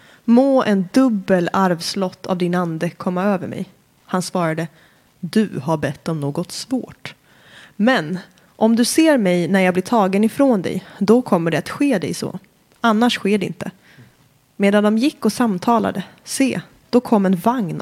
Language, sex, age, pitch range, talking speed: Swedish, female, 20-39, 185-230 Hz, 170 wpm